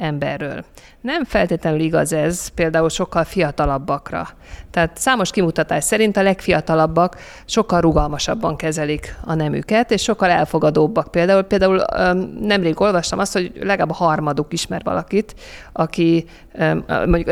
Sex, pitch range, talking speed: female, 160-195 Hz, 120 wpm